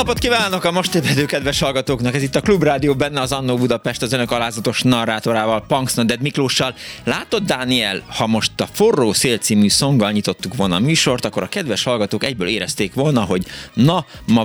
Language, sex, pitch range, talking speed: Hungarian, male, 95-125 Hz, 185 wpm